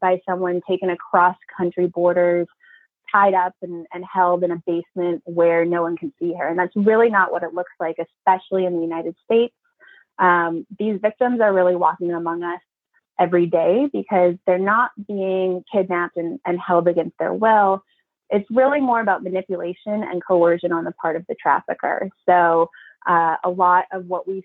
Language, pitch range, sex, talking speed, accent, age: English, 175-210 Hz, female, 180 wpm, American, 20-39